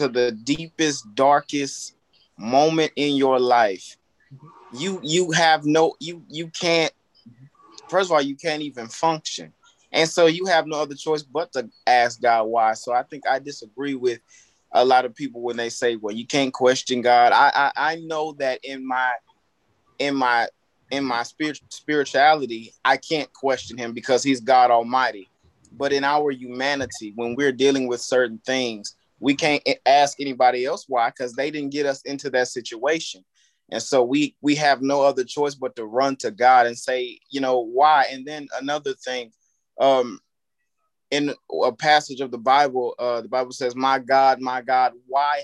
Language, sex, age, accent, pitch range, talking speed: English, male, 20-39, American, 125-150 Hz, 175 wpm